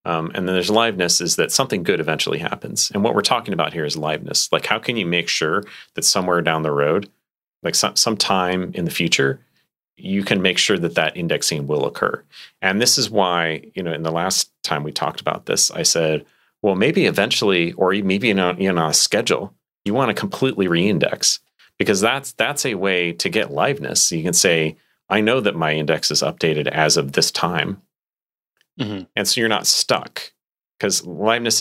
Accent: American